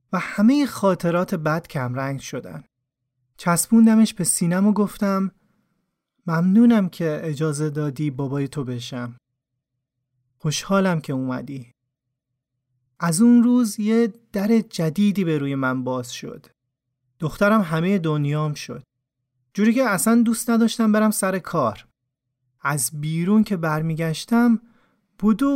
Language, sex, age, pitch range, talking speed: Persian, male, 30-49, 135-220 Hz, 115 wpm